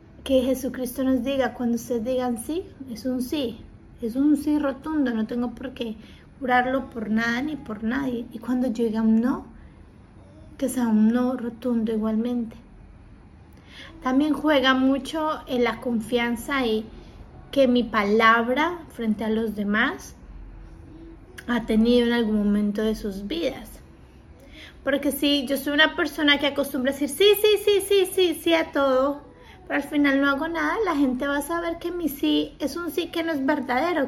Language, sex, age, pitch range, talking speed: Spanish, female, 30-49, 235-305 Hz, 170 wpm